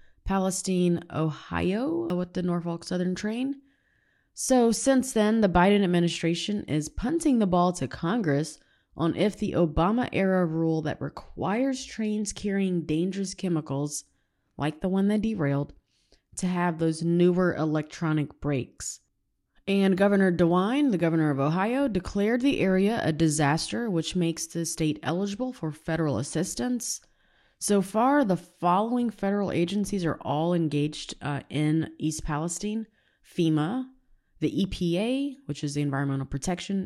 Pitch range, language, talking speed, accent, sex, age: 150-200 Hz, English, 135 wpm, American, female, 20-39